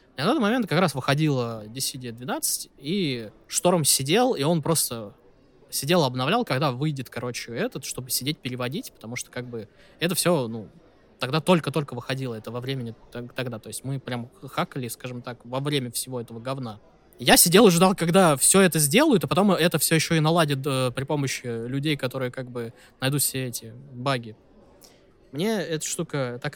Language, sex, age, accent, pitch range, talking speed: Russian, male, 20-39, native, 120-155 Hz, 175 wpm